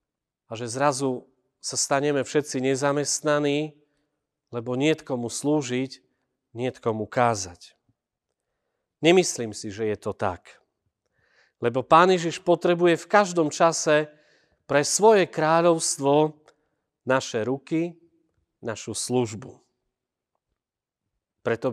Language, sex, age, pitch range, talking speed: Slovak, male, 40-59, 125-155 Hz, 95 wpm